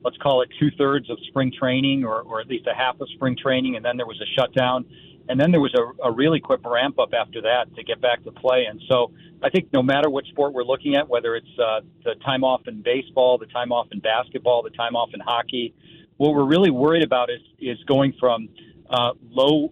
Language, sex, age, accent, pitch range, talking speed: English, male, 40-59, American, 120-140 Hz, 235 wpm